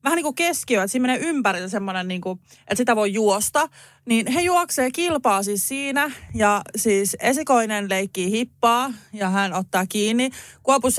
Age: 20-39